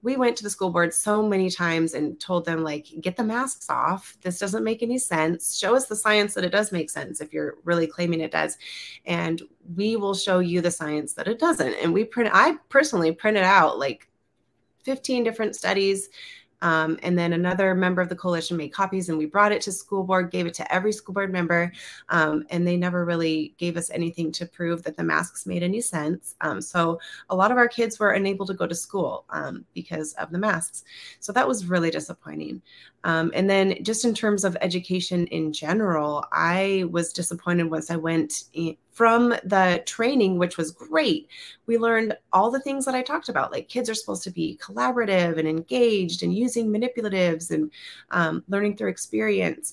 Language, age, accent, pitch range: English, 30-49, American, 165-215 Hz